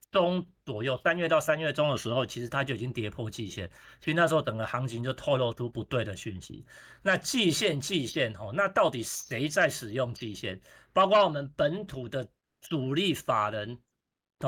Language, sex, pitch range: Chinese, male, 115-160 Hz